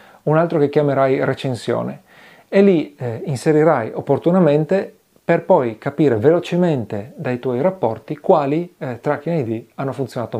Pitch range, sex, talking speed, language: 125-165 Hz, male, 135 wpm, Italian